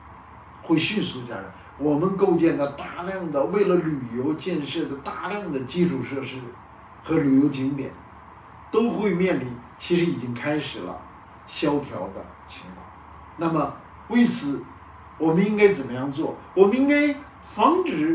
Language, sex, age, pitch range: Chinese, male, 50-69, 135-220 Hz